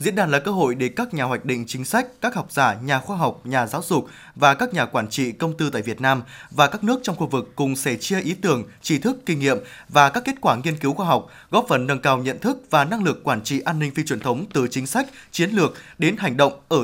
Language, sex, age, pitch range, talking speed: Vietnamese, male, 20-39, 135-195 Hz, 280 wpm